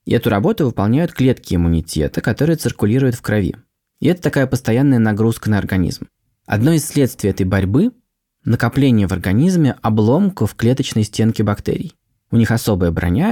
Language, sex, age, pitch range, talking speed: Russian, male, 20-39, 100-130 Hz, 150 wpm